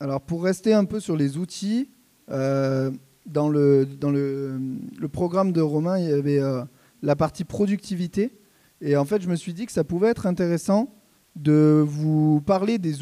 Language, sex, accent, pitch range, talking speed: French, male, French, 155-200 Hz, 185 wpm